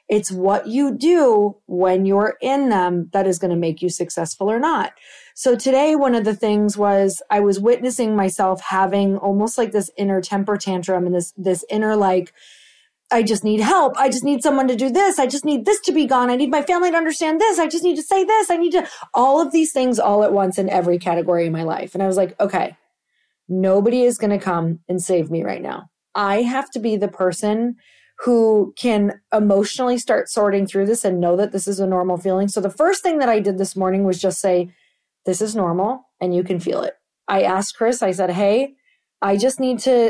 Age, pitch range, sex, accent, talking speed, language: 30-49, 195-245 Hz, female, American, 230 wpm, English